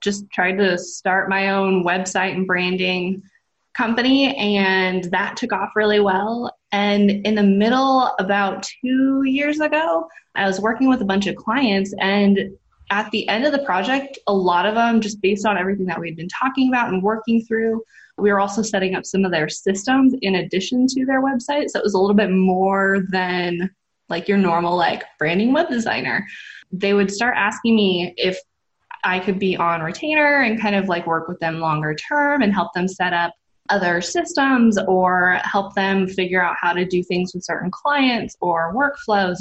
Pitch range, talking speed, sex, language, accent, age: 185-225 Hz, 190 wpm, female, English, American, 20-39